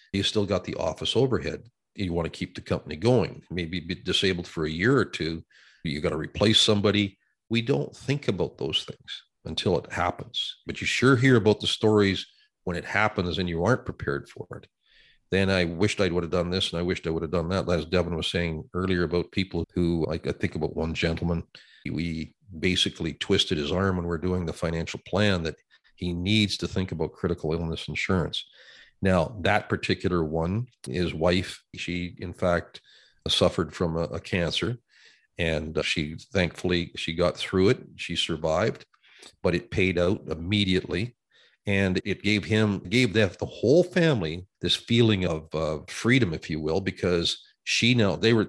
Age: 40-59